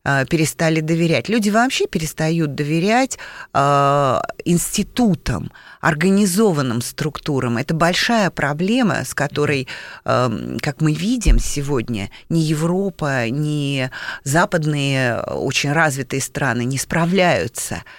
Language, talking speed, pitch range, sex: Russian, 95 wpm, 145-200 Hz, female